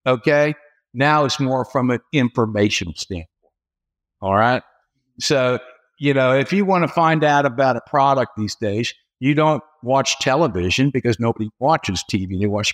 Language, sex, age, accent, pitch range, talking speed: English, male, 60-79, American, 115-150 Hz, 160 wpm